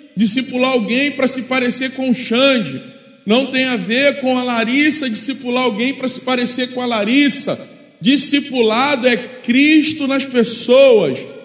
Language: Portuguese